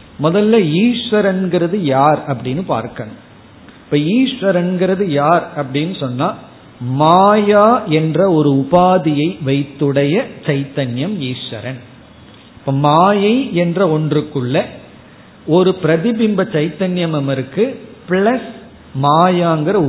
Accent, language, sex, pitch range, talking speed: native, Tamil, male, 135-190 Hz, 30 wpm